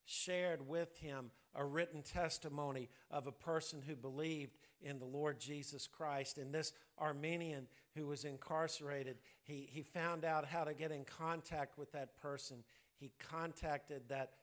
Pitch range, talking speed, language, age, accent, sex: 135-160 Hz, 155 wpm, English, 50-69, American, male